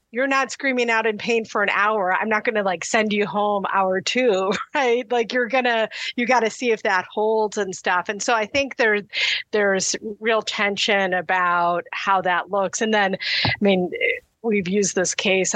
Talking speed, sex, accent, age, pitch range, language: 195 wpm, female, American, 30-49, 190-235 Hz, English